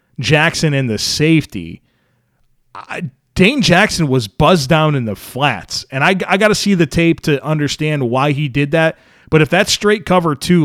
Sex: male